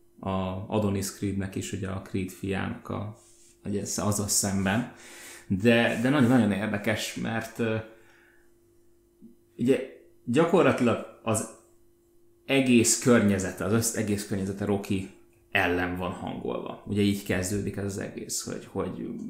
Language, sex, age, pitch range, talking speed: Hungarian, male, 30-49, 95-115 Hz, 115 wpm